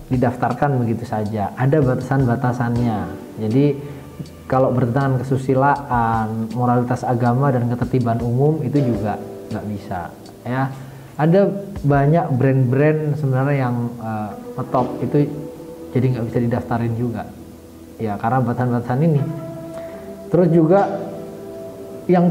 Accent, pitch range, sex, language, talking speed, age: native, 120-150 Hz, male, Indonesian, 110 wpm, 20-39